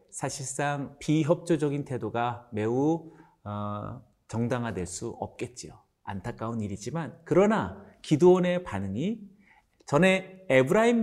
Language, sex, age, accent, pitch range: Korean, male, 40-59, native, 110-180 Hz